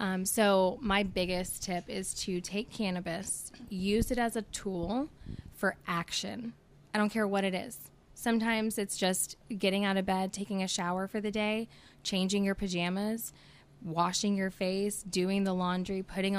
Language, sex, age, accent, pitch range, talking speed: English, female, 10-29, American, 180-215 Hz, 165 wpm